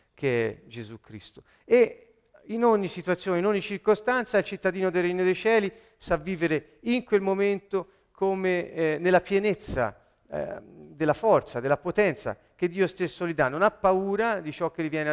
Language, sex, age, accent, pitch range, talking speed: Italian, male, 40-59, native, 140-195 Hz, 175 wpm